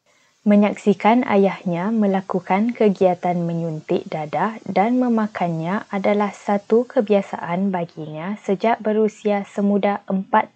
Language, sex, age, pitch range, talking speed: Malay, female, 20-39, 175-205 Hz, 90 wpm